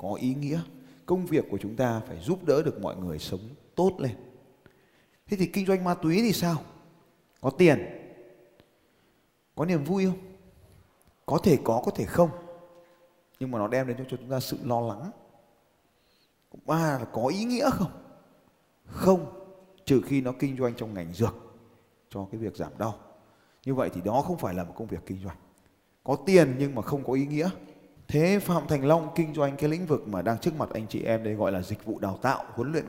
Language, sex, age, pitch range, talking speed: Vietnamese, male, 20-39, 115-170 Hz, 210 wpm